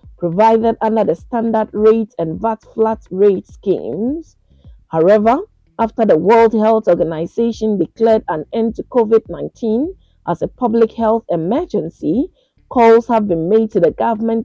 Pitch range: 185-235 Hz